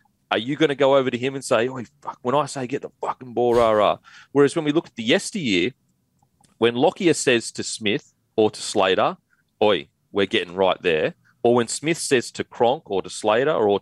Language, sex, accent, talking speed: English, male, Australian, 215 wpm